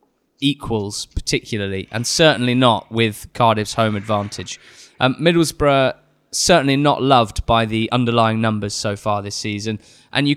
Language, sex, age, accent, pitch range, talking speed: English, male, 20-39, British, 110-130 Hz, 140 wpm